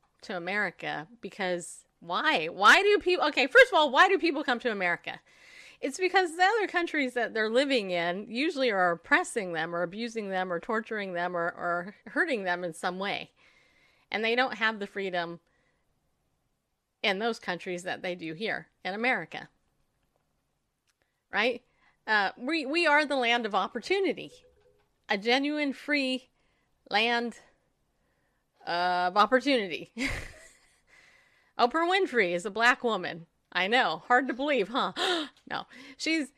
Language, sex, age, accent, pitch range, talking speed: English, female, 30-49, American, 200-285 Hz, 145 wpm